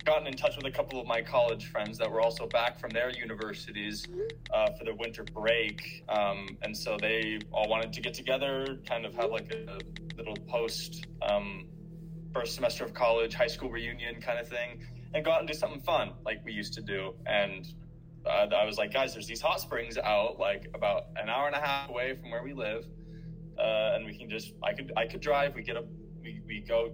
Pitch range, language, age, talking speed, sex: 120-165 Hz, English, 20-39, 225 wpm, male